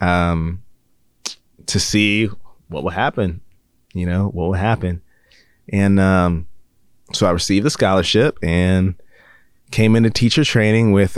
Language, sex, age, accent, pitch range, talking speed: English, male, 30-49, American, 85-110 Hz, 130 wpm